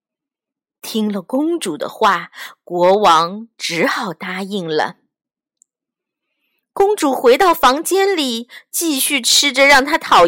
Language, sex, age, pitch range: Chinese, female, 30-49, 250-370 Hz